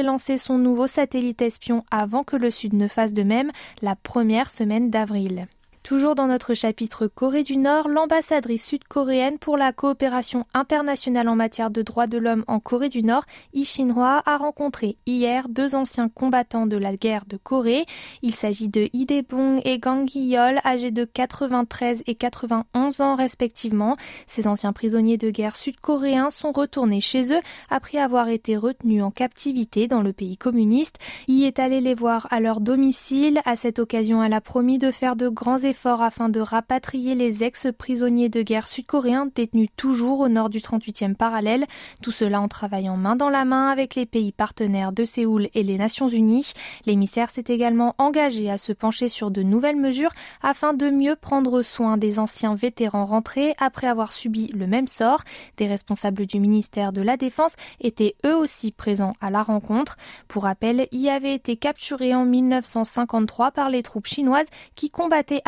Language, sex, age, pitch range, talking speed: French, female, 20-39, 220-270 Hz, 180 wpm